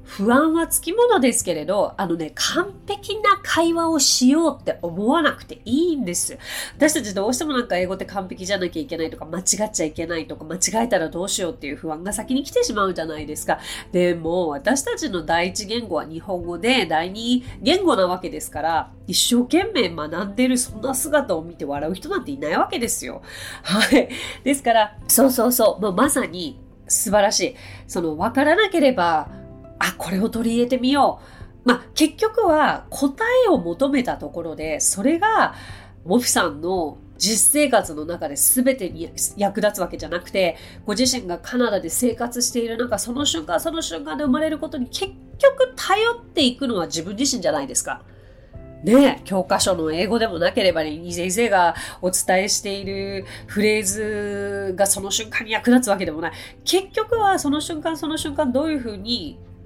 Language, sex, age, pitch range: Japanese, female, 30-49, 175-280 Hz